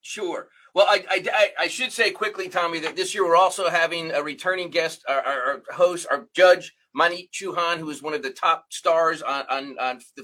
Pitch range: 155-195 Hz